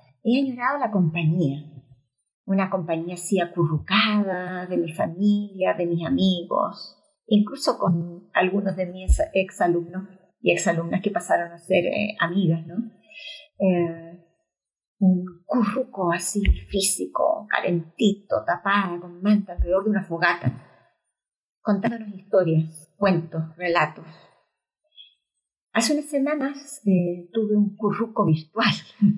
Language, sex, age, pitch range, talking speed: Spanish, female, 40-59, 165-210 Hz, 115 wpm